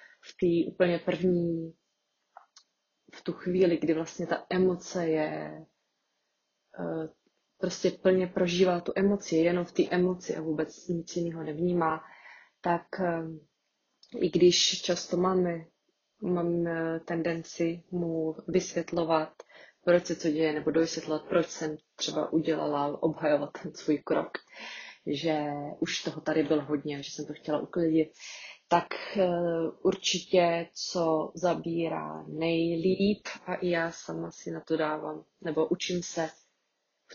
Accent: native